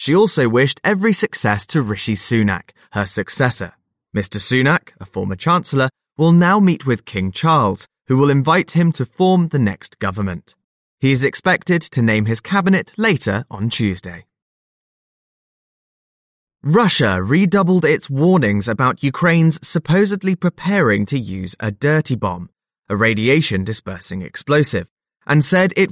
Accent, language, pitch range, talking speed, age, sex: British, English, 105-175 Hz, 135 wpm, 20-39, male